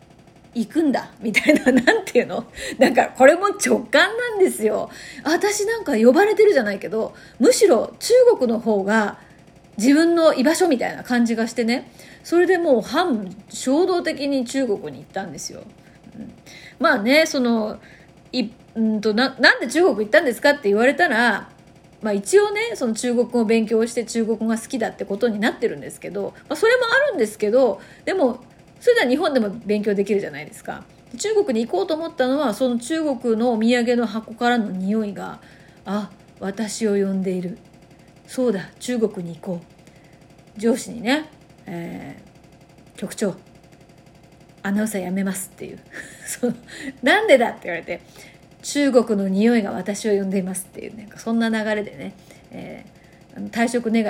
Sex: female